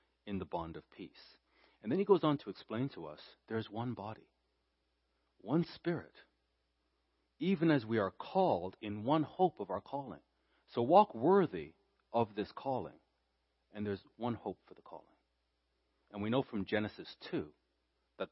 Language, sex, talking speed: English, male, 165 wpm